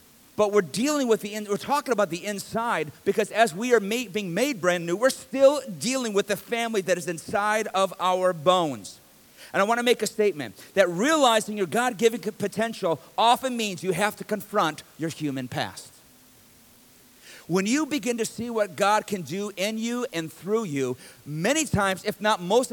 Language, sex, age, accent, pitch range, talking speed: English, male, 50-69, American, 175-230 Hz, 185 wpm